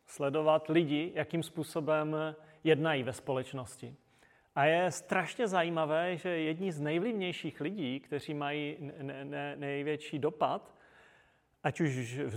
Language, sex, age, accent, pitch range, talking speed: Czech, male, 30-49, native, 135-165 Hz, 110 wpm